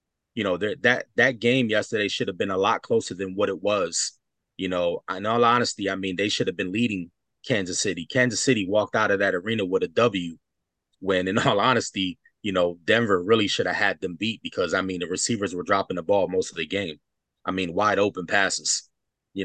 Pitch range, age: 95-115 Hz, 20-39